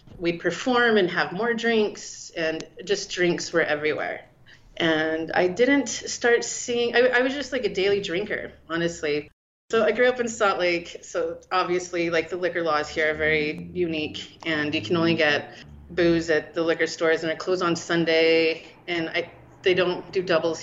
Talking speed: 185 wpm